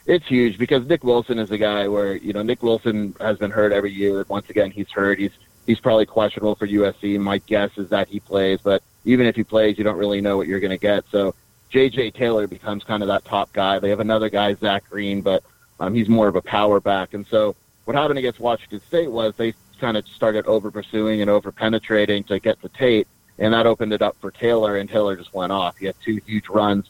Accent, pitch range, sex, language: American, 100-110 Hz, male, English